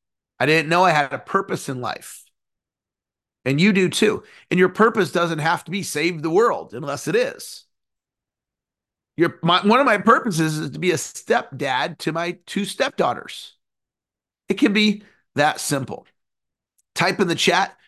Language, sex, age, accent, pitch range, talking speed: English, male, 40-59, American, 140-195 Hz, 165 wpm